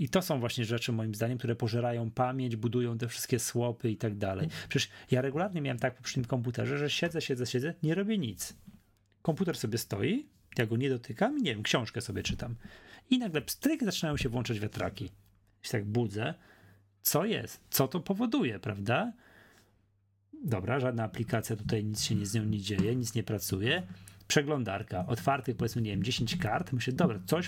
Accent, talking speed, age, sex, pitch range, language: native, 185 wpm, 30-49, male, 105-140 Hz, Polish